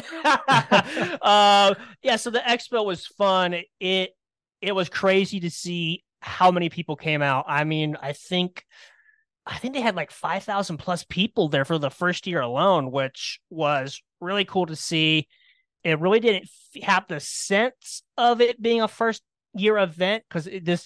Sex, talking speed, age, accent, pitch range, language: male, 165 wpm, 30-49, American, 140-185 Hz, English